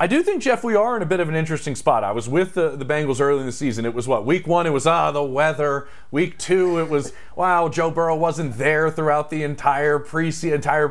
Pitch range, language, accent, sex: 120-160 Hz, English, American, male